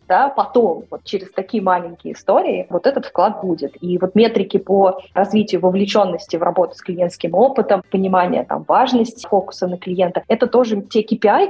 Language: Russian